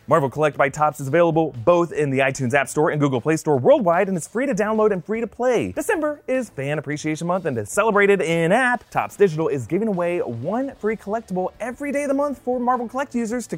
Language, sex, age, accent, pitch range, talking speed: English, male, 30-49, American, 155-245 Hz, 235 wpm